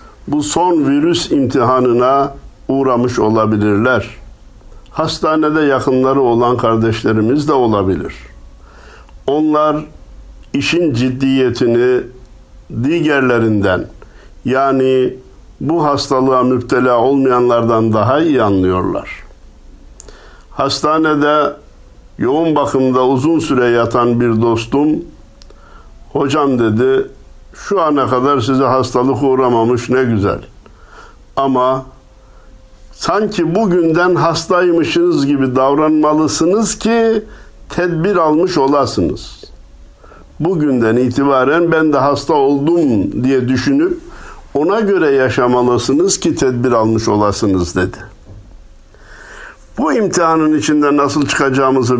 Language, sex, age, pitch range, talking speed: Turkish, male, 60-79, 120-155 Hz, 85 wpm